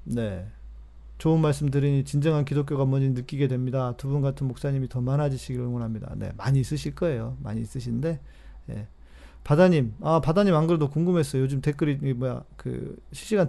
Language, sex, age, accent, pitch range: Korean, male, 40-59, native, 115-145 Hz